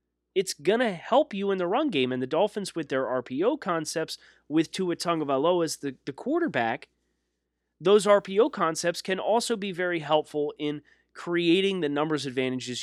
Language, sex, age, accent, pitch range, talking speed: English, male, 30-49, American, 125-175 Hz, 170 wpm